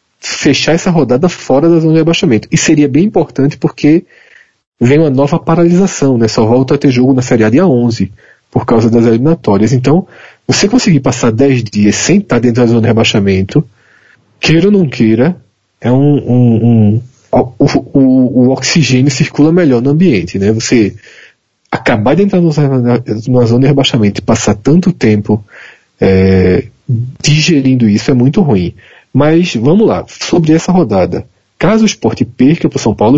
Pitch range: 115-155 Hz